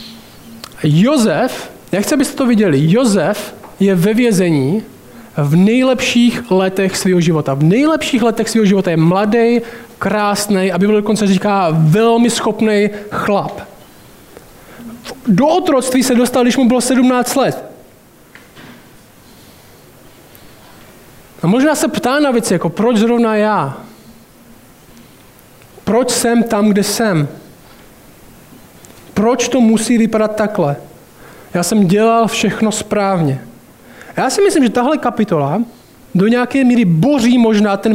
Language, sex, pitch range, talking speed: Czech, male, 195-235 Hz, 120 wpm